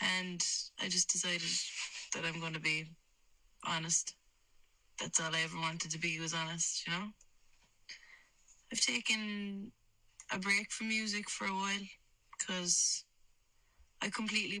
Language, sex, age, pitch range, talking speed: English, female, 20-39, 165-195 Hz, 135 wpm